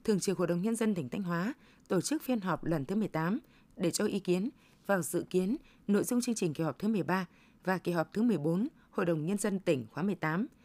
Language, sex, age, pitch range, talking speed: Vietnamese, female, 20-39, 175-230 Hz, 240 wpm